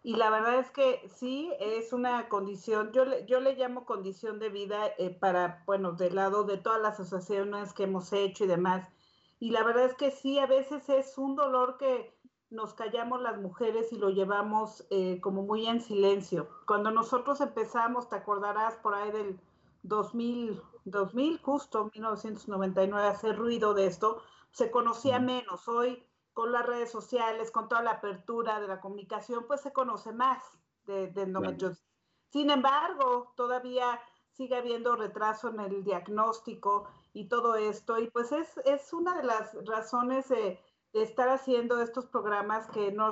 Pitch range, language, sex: 205-250 Hz, Spanish, female